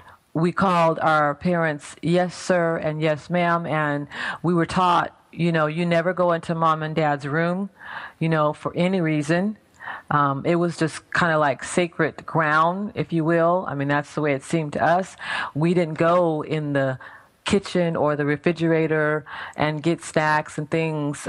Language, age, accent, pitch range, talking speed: English, 40-59, American, 145-170 Hz, 180 wpm